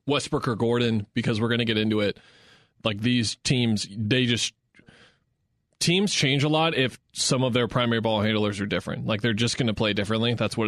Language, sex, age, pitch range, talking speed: English, male, 20-39, 105-125 Hz, 210 wpm